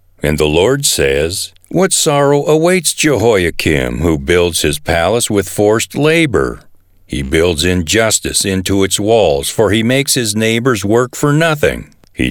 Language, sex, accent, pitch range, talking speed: English, male, American, 90-140 Hz, 145 wpm